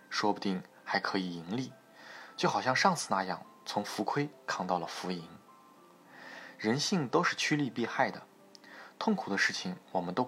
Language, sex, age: Chinese, male, 20-39